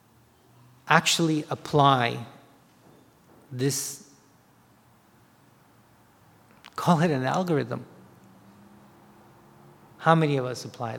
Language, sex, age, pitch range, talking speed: English, male, 40-59, 135-180 Hz, 65 wpm